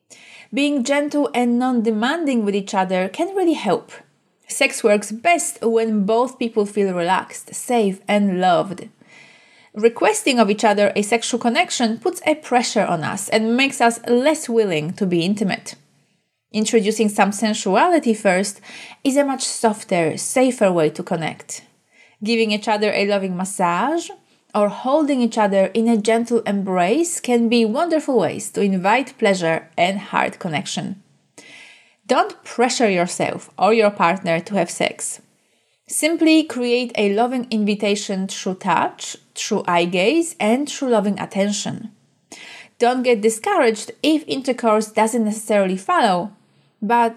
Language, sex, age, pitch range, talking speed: English, female, 30-49, 200-250 Hz, 140 wpm